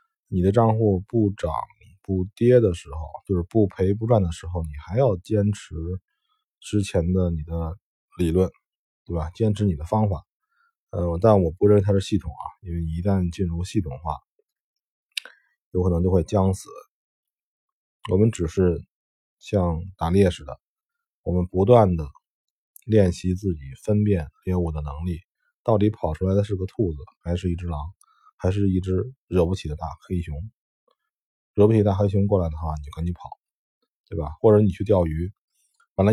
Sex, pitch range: male, 85-110 Hz